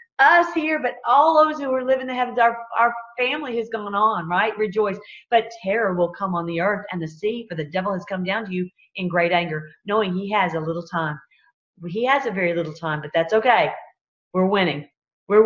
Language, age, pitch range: English, 40-59, 180-240 Hz